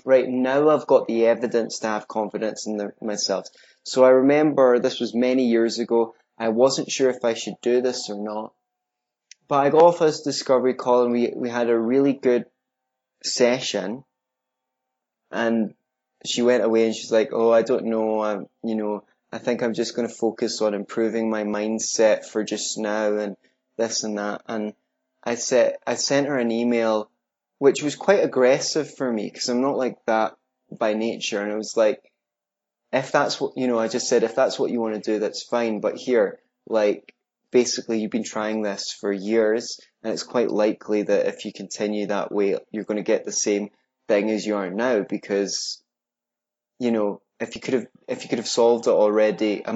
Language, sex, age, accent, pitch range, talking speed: English, male, 20-39, British, 105-125 Hz, 200 wpm